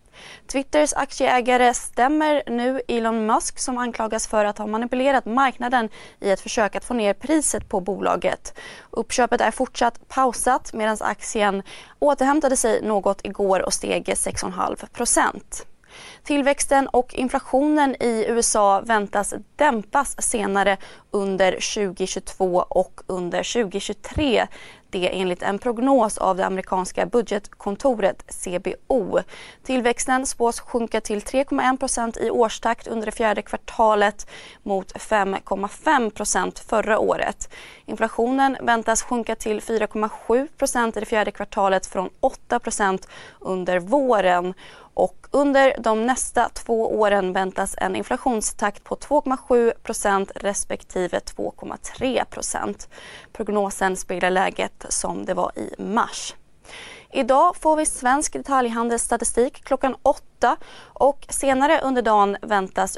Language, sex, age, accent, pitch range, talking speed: Swedish, female, 20-39, native, 205-265 Hz, 115 wpm